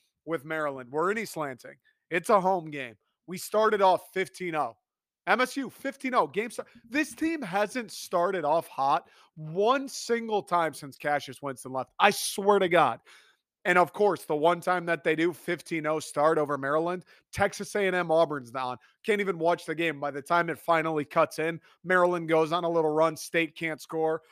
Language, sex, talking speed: English, male, 180 wpm